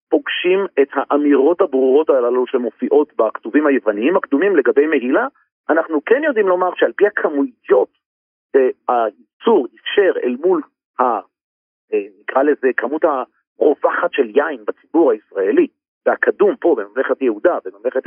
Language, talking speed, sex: Hebrew, 125 wpm, male